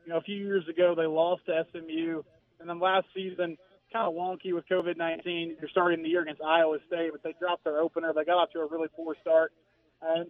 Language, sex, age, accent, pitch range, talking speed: English, male, 30-49, American, 170-195 Hz, 240 wpm